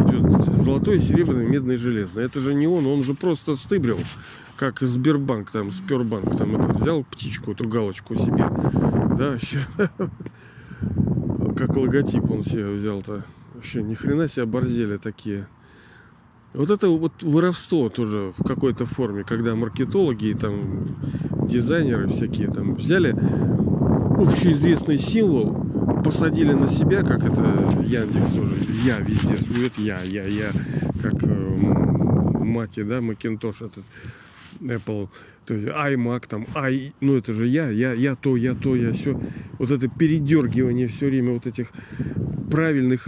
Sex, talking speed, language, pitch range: male, 130 wpm, Russian, 115-145 Hz